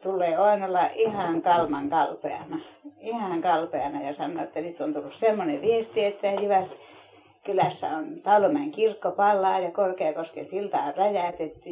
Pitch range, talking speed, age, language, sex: 185-220 Hz, 145 wpm, 30-49, Finnish, female